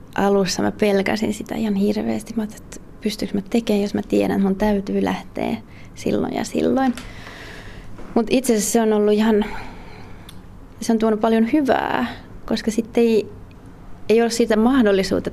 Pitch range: 195-225 Hz